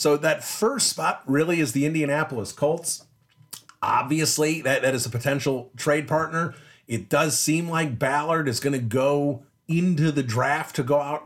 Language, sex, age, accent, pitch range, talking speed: English, male, 40-59, American, 125-155 Hz, 170 wpm